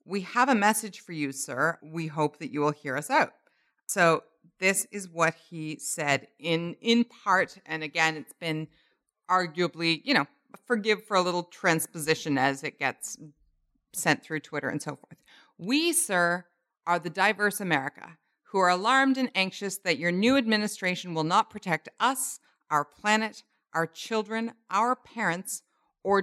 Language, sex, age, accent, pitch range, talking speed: English, female, 40-59, American, 155-205 Hz, 160 wpm